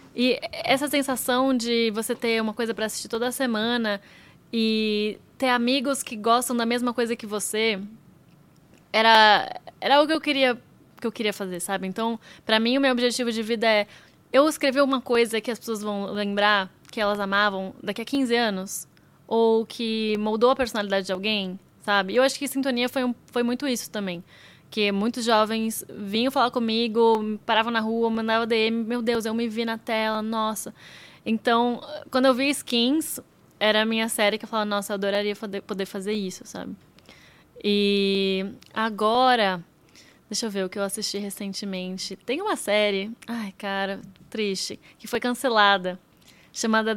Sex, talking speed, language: female, 170 wpm, Portuguese